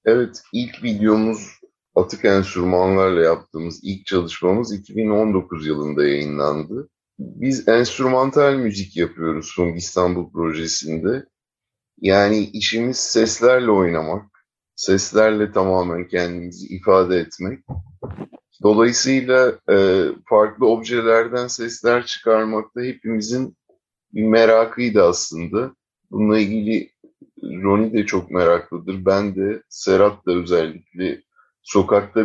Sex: male